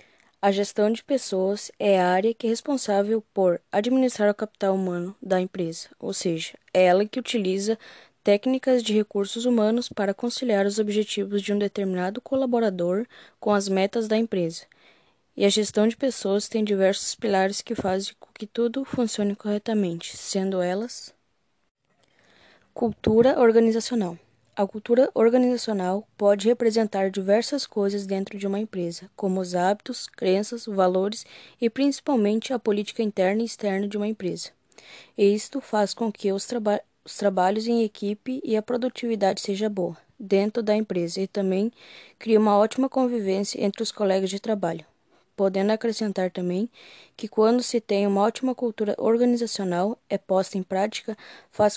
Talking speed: 150 wpm